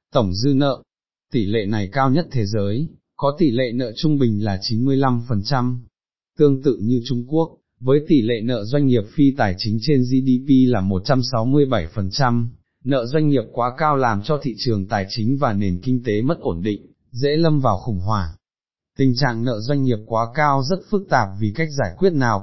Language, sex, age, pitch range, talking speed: Vietnamese, male, 20-39, 110-140 Hz, 200 wpm